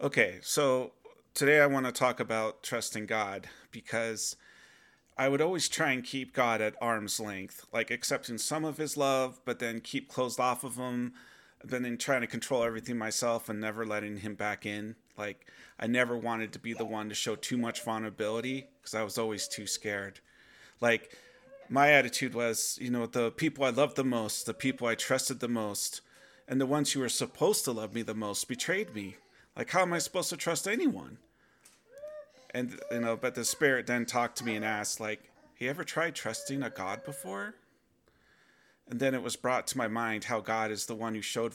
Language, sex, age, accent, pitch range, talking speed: English, male, 30-49, American, 110-135 Hz, 200 wpm